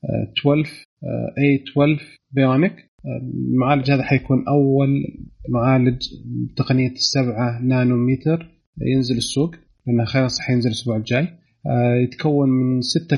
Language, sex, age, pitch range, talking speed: Arabic, male, 30-49, 120-145 Hz, 100 wpm